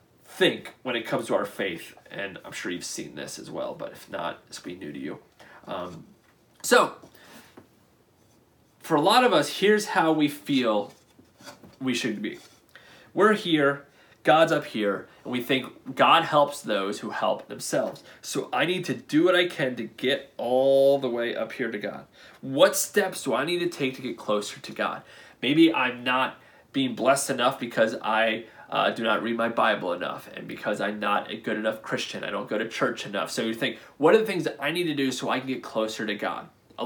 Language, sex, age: English, male, 30-49